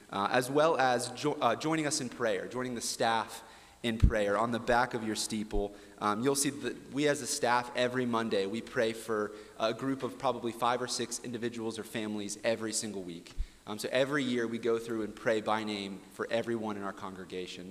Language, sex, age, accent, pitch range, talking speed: English, male, 30-49, American, 100-120 Hz, 210 wpm